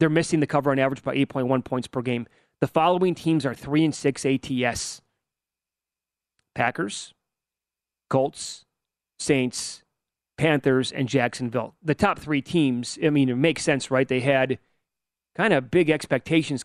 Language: English